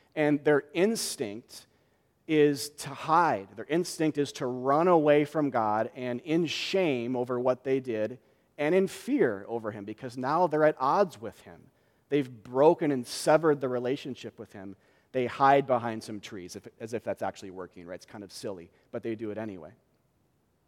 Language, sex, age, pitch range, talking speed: English, male, 40-59, 125-165 Hz, 175 wpm